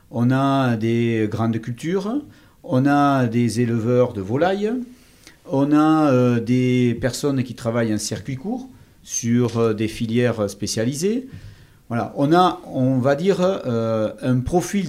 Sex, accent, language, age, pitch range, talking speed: male, French, French, 50-69, 110-150 Hz, 140 wpm